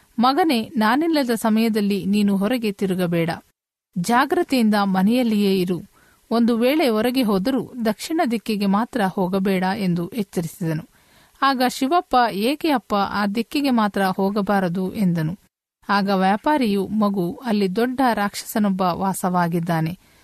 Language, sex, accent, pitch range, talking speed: Kannada, female, native, 190-240 Hz, 105 wpm